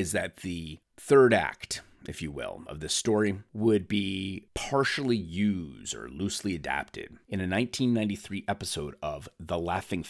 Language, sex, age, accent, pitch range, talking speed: English, male, 30-49, American, 85-110 Hz, 150 wpm